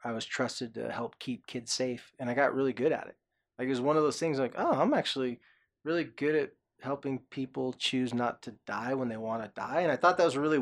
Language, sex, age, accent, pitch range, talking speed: English, male, 20-39, American, 120-140 Hz, 265 wpm